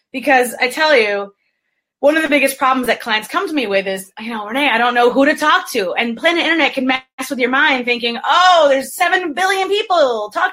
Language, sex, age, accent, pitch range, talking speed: English, female, 30-49, American, 235-295 Hz, 235 wpm